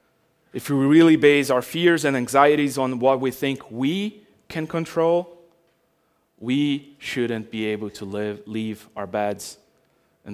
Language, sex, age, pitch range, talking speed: English, male, 30-49, 115-150 Hz, 145 wpm